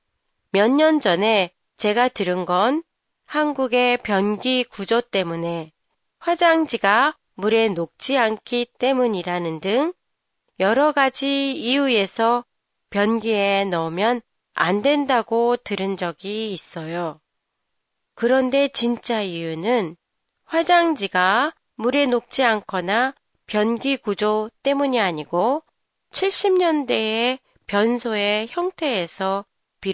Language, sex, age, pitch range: Japanese, female, 30-49, 195-280 Hz